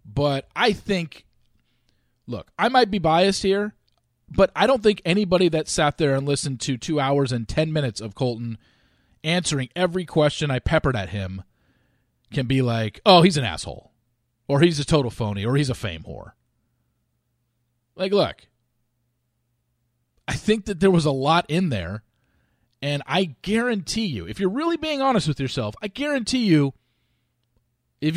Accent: American